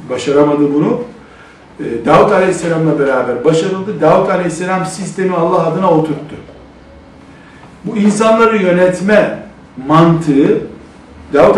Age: 60-79